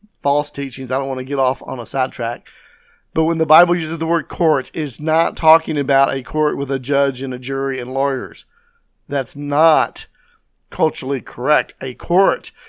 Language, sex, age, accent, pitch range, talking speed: English, male, 50-69, American, 135-175 Hz, 185 wpm